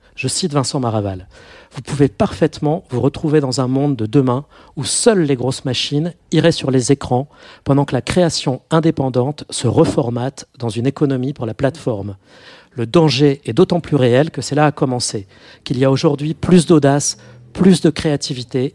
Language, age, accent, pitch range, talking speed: French, 40-59, French, 125-155 Hz, 180 wpm